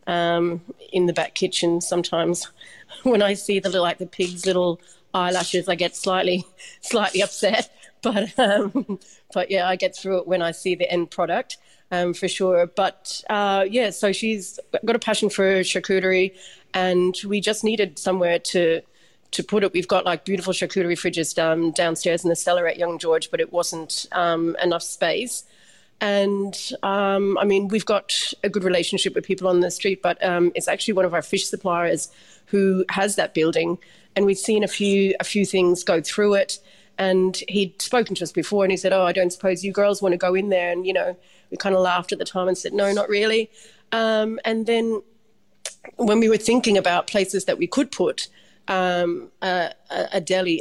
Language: English